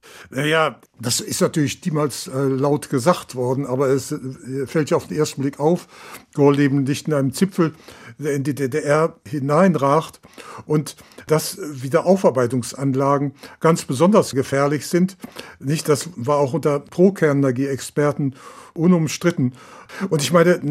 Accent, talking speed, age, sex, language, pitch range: German, 125 wpm, 60-79, male, German, 140-170 Hz